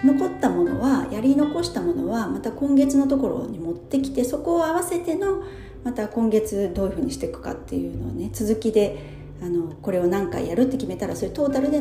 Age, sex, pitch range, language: 40-59, female, 180-280 Hz, Japanese